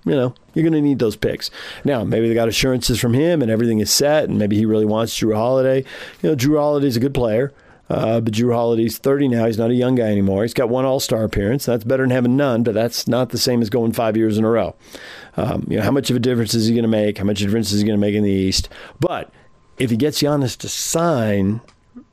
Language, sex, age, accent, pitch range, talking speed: English, male, 40-59, American, 105-130 Hz, 270 wpm